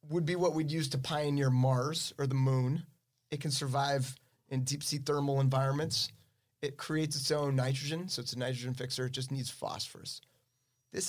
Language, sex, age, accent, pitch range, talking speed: English, male, 30-49, American, 125-140 Hz, 185 wpm